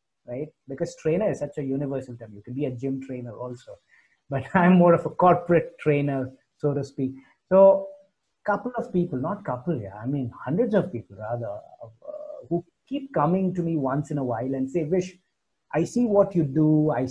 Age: 30-49